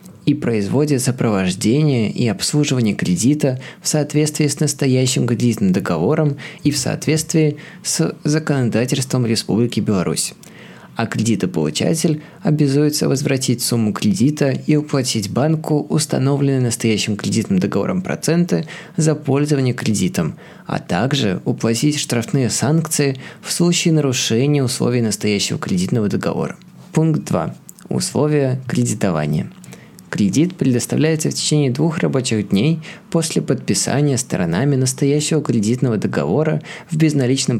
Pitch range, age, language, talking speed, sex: 120-155 Hz, 20-39, Russian, 105 wpm, male